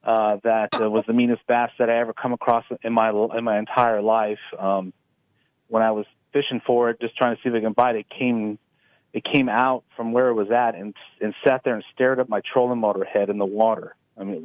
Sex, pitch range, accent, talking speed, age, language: male, 110-125 Hz, American, 245 wpm, 40-59, English